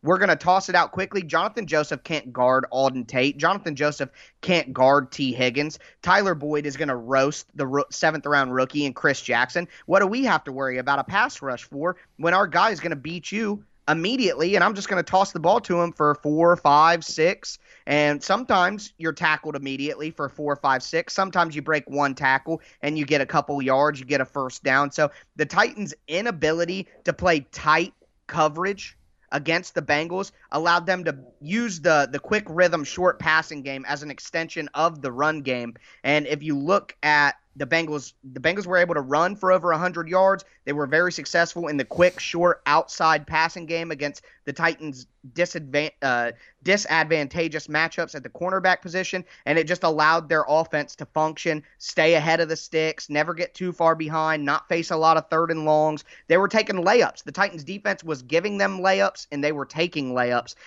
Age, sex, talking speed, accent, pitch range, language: 30-49, male, 200 wpm, American, 145-175 Hz, English